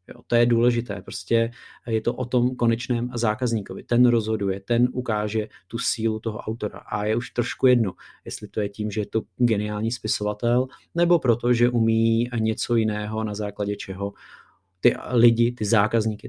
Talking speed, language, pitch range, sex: 165 wpm, Czech, 110-125 Hz, male